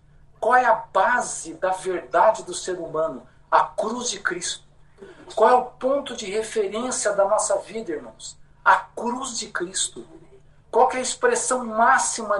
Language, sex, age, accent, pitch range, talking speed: Portuguese, male, 60-79, Brazilian, 175-230 Hz, 160 wpm